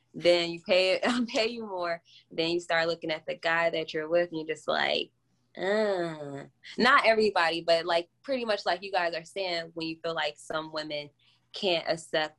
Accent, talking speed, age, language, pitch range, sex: American, 200 wpm, 20-39, English, 140-165 Hz, female